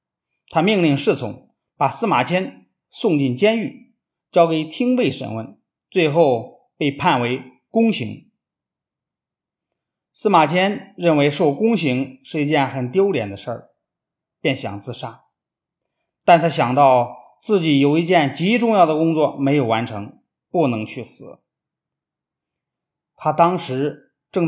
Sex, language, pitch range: male, Chinese, 130-190 Hz